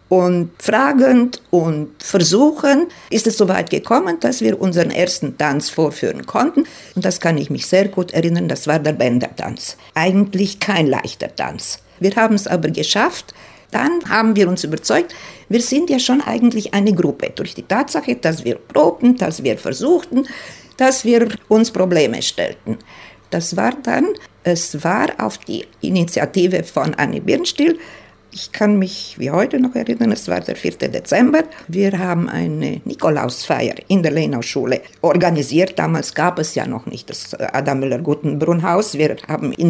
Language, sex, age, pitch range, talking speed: German, female, 50-69, 170-240 Hz, 160 wpm